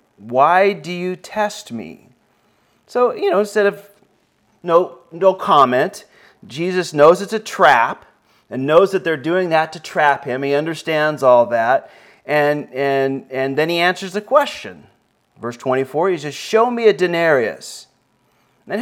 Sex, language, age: male, English, 40-59